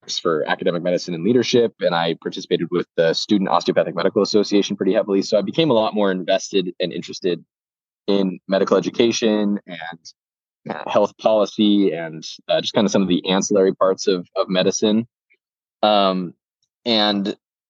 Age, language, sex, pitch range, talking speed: 20-39, English, male, 95-115 Hz, 155 wpm